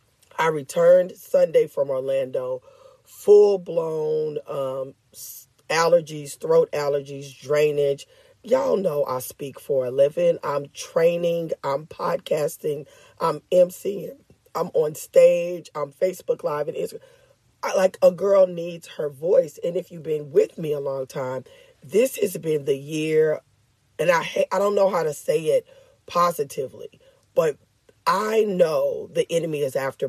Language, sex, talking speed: English, female, 140 wpm